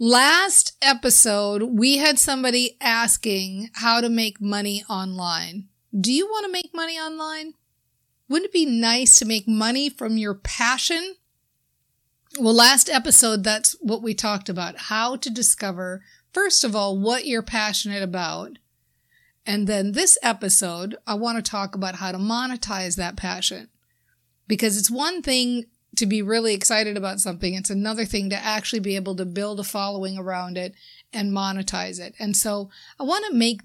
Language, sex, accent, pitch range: English, female, American, 200-245 Hz